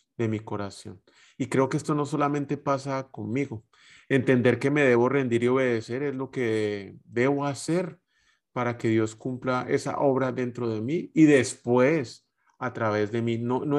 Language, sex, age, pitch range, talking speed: Spanish, male, 30-49, 115-140 Hz, 175 wpm